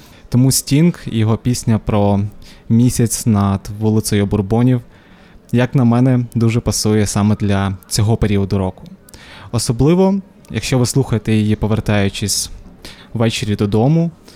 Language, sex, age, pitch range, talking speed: Ukrainian, male, 20-39, 105-120 Hz, 115 wpm